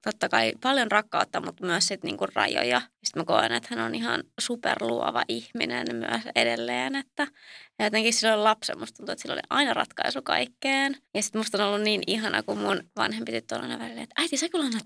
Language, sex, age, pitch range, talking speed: Finnish, female, 20-39, 205-270 Hz, 200 wpm